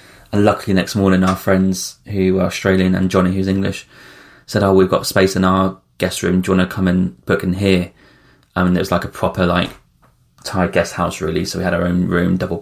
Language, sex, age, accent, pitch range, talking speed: English, male, 20-39, British, 90-105 Hz, 240 wpm